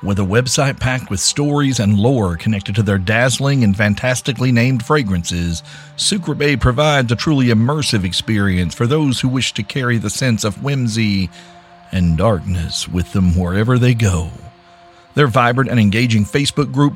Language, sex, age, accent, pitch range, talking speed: English, male, 50-69, American, 100-140 Hz, 165 wpm